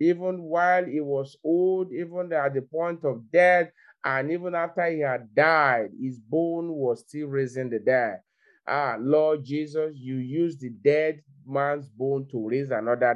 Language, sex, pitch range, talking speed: English, male, 135-160 Hz, 165 wpm